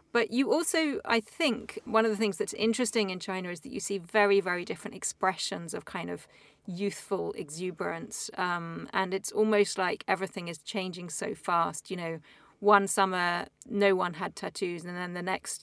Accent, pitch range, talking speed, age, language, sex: British, 190-220 Hz, 185 wpm, 30-49, English, female